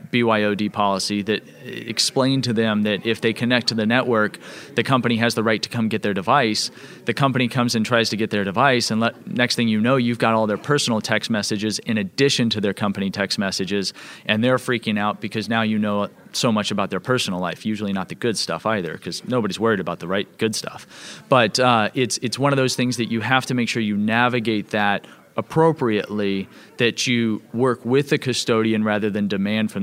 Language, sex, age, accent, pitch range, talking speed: English, male, 30-49, American, 105-125 Hz, 215 wpm